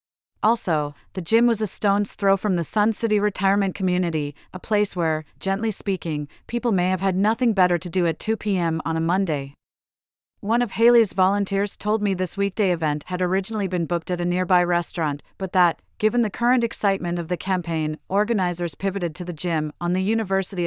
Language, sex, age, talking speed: English, female, 30-49, 190 wpm